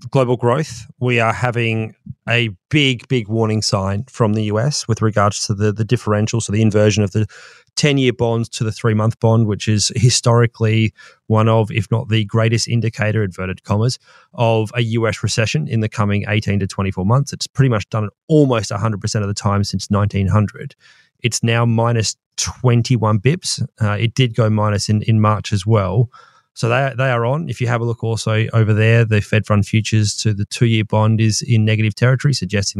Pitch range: 105-125 Hz